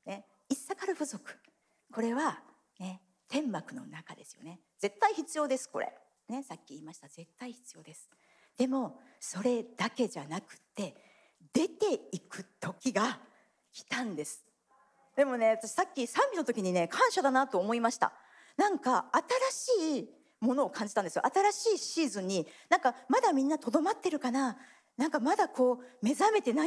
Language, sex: Japanese, female